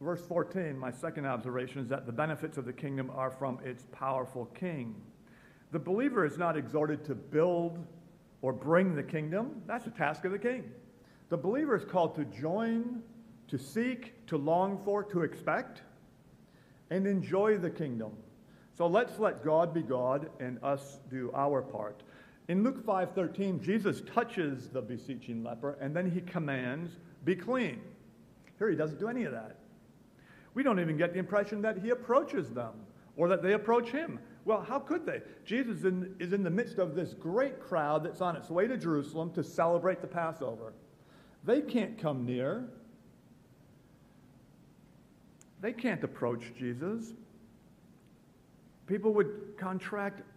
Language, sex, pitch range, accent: English, male, 140-205 Hz, American